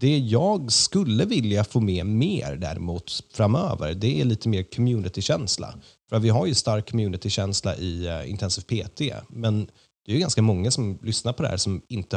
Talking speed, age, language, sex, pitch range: 180 wpm, 30-49, Swedish, male, 95-115 Hz